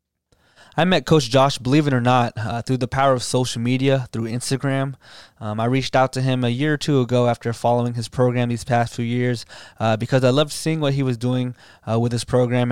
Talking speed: 230 wpm